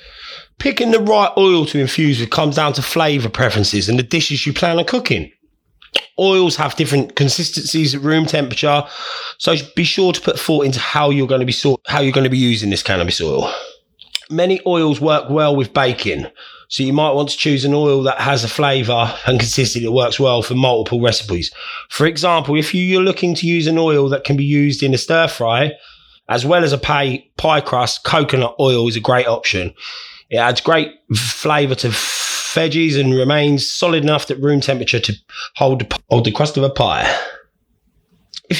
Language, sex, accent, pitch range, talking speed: English, male, British, 125-155 Hz, 195 wpm